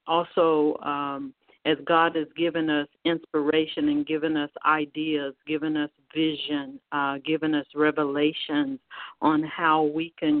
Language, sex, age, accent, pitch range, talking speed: English, female, 50-69, American, 150-190 Hz, 135 wpm